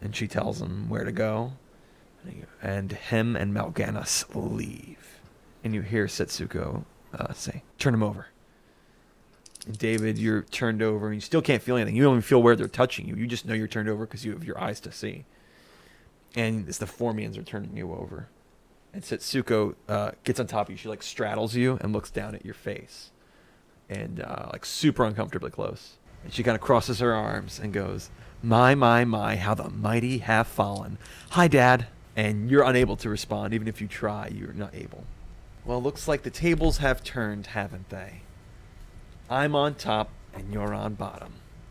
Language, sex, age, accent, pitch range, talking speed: English, male, 20-39, American, 105-125 Hz, 190 wpm